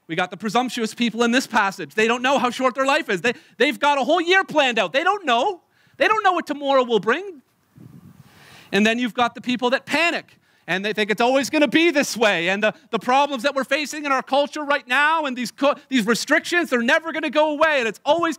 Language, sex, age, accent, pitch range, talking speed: English, male, 40-59, American, 225-295 Hz, 250 wpm